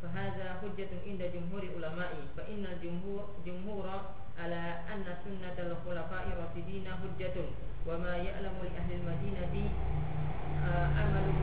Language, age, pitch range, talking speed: Indonesian, 20-39, 165-190 Hz, 120 wpm